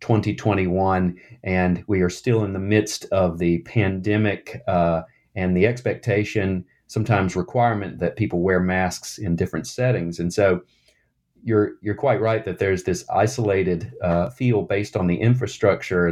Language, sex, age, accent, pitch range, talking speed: English, male, 40-59, American, 95-120 Hz, 150 wpm